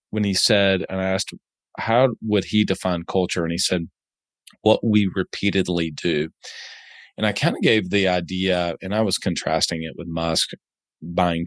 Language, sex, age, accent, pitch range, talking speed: English, male, 30-49, American, 85-100 Hz, 175 wpm